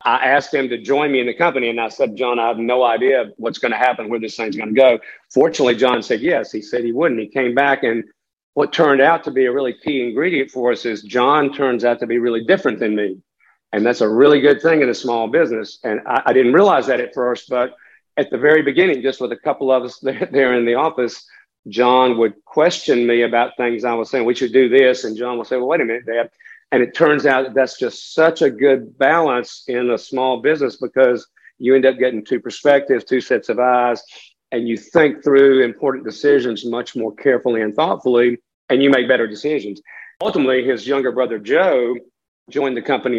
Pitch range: 120-135 Hz